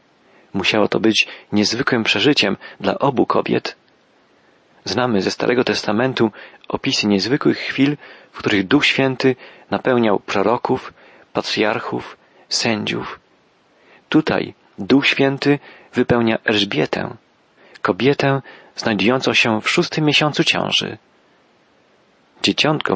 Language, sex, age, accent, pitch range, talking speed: Polish, male, 40-59, native, 105-135 Hz, 95 wpm